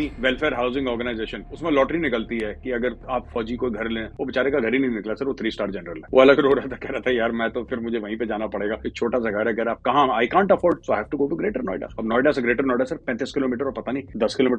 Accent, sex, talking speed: Indian, male, 155 wpm